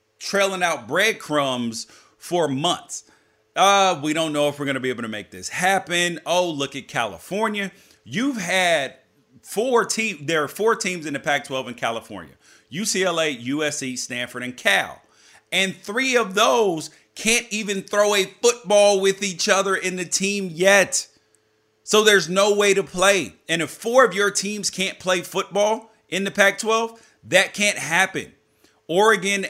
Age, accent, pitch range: 40-59, American, 145-195 Hz